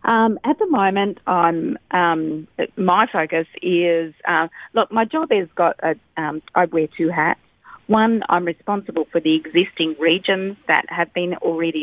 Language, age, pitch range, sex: English, 40-59, 155-195 Hz, female